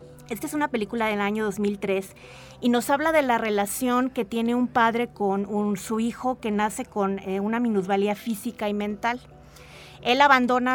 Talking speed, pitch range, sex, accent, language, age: 175 wpm, 200-245 Hz, female, Mexican, Spanish, 30-49